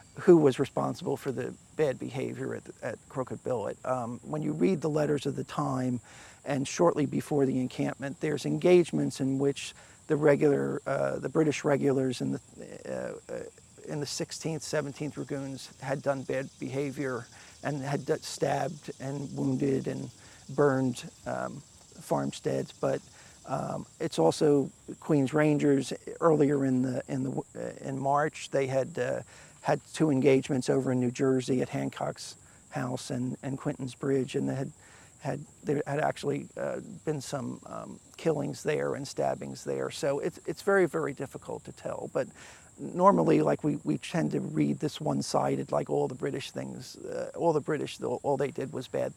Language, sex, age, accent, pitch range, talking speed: English, male, 50-69, American, 120-150 Hz, 165 wpm